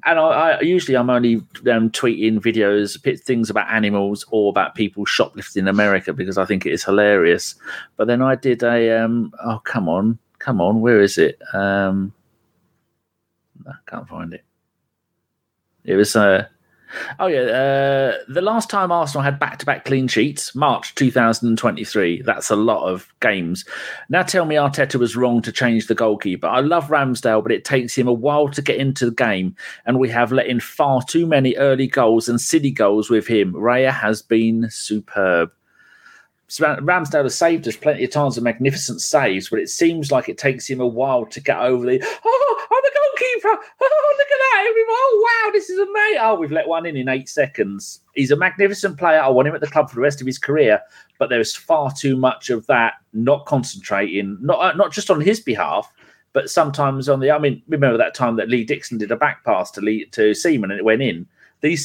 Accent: British